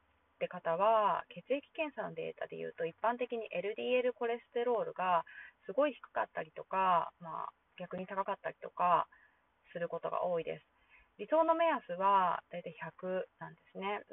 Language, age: Japanese, 20-39